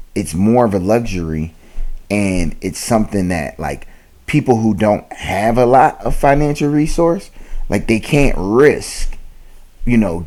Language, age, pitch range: English, 30-49, 90-115 Hz